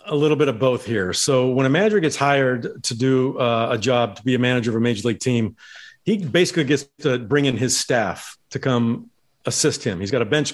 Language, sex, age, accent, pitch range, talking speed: English, male, 40-59, American, 125-150 Hz, 240 wpm